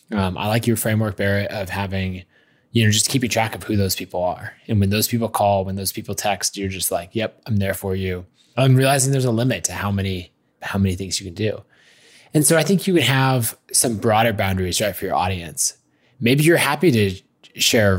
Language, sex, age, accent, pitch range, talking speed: English, male, 20-39, American, 100-125 Hz, 225 wpm